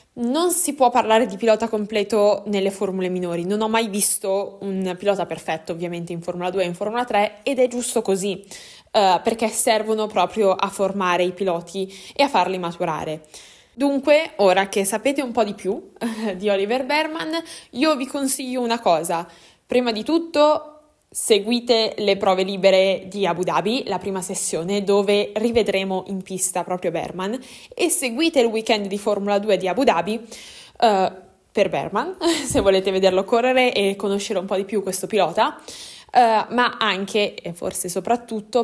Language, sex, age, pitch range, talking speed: Italian, female, 20-39, 190-245 Hz, 160 wpm